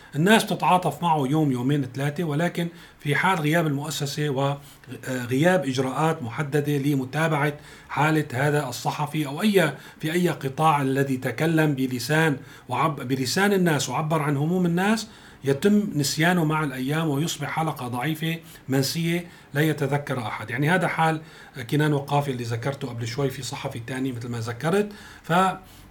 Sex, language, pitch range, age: male, Arabic, 140-180 Hz, 40-59